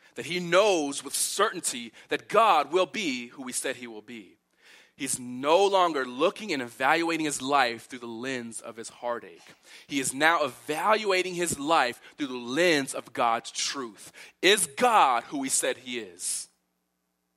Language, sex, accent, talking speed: English, male, American, 165 wpm